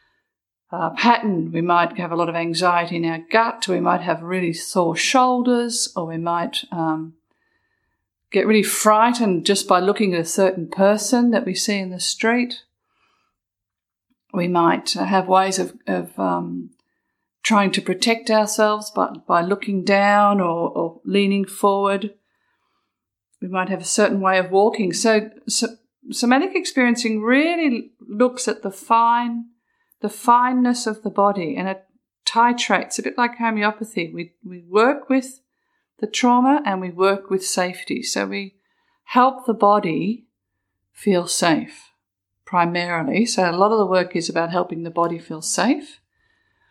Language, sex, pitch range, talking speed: English, female, 175-235 Hz, 155 wpm